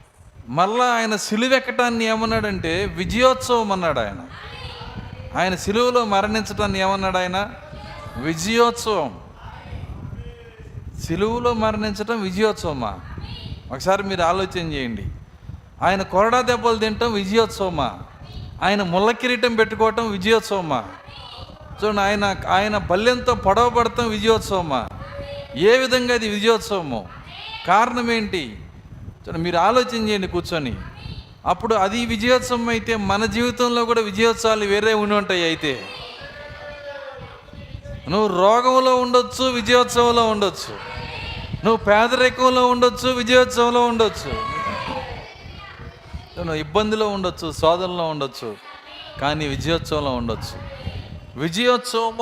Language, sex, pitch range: Telugu, male, 170-235 Hz